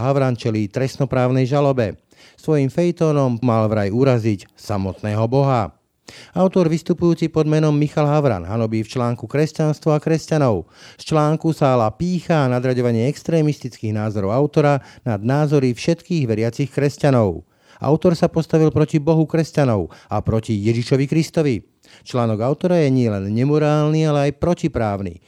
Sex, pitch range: male, 115-150 Hz